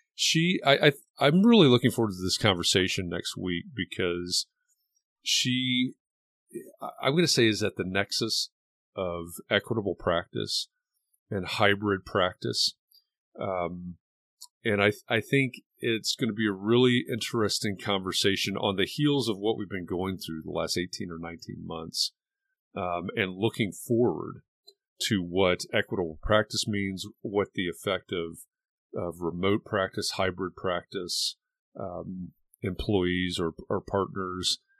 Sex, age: male, 40-59